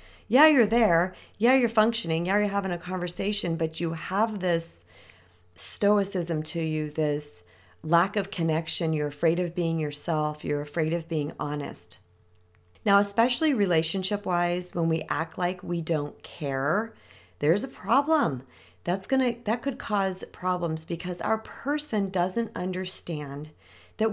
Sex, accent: female, American